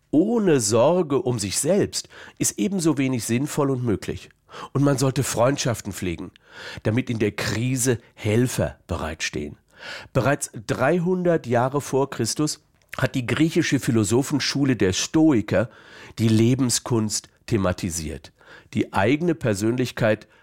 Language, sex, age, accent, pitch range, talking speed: German, male, 50-69, German, 110-140 Hz, 115 wpm